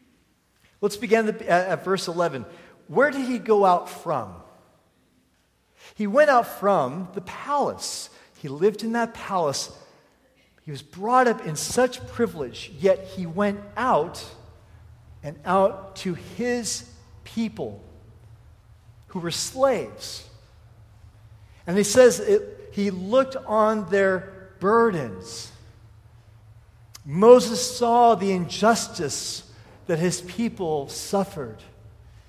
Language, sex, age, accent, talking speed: English, male, 40-59, American, 110 wpm